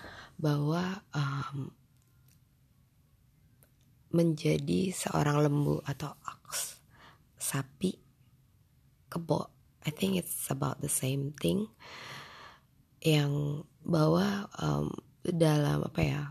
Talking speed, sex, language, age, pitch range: 80 wpm, female, English, 20-39, 130-155 Hz